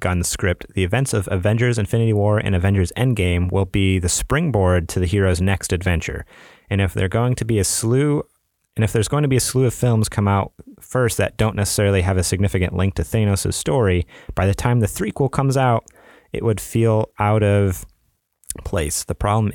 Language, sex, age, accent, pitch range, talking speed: English, male, 30-49, American, 90-105 Hz, 205 wpm